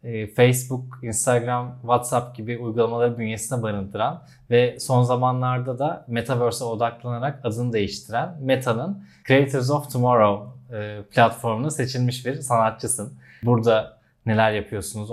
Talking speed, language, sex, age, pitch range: 105 wpm, Turkish, male, 20-39, 110-130 Hz